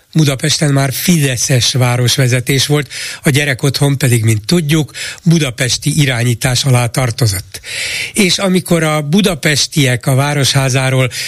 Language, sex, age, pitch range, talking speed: Hungarian, male, 60-79, 120-150 Hz, 105 wpm